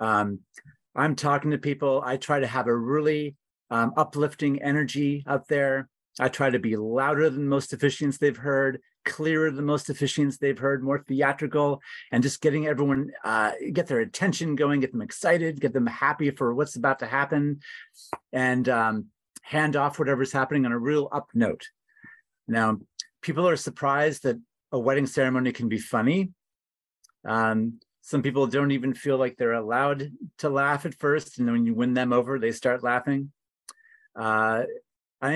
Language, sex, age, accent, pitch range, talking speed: English, male, 30-49, American, 125-150 Hz, 170 wpm